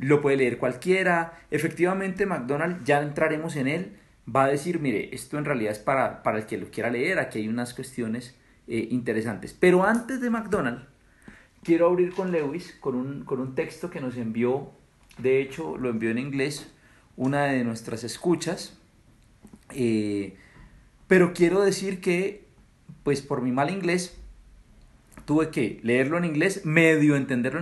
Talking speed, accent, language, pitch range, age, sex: 160 wpm, Colombian, Spanish, 125-170 Hz, 40-59, male